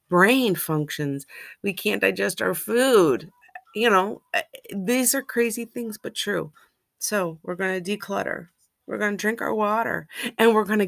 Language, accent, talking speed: English, American, 165 wpm